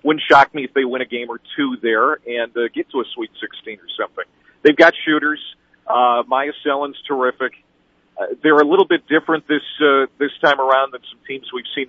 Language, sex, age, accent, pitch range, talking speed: English, male, 40-59, American, 120-155 Hz, 215 wpm